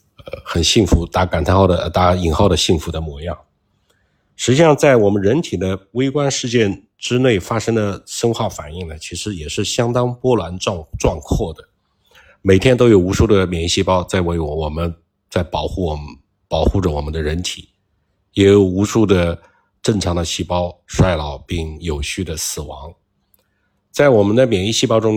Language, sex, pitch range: Chinese, male, 85-110 Hz